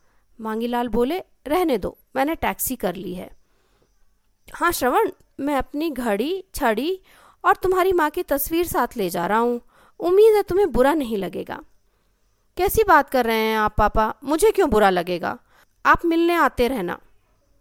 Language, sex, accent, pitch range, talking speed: Hindi, female, native, 205-280 Hz, 155 wpm